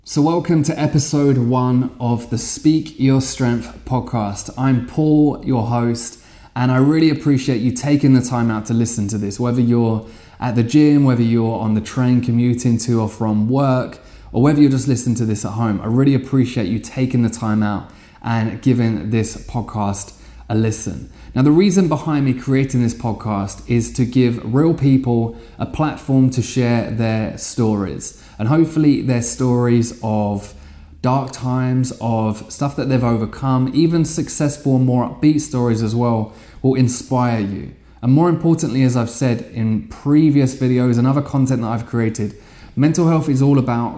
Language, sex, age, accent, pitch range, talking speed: English, male, 20-39, British, 115-135 Hz, 175 wpm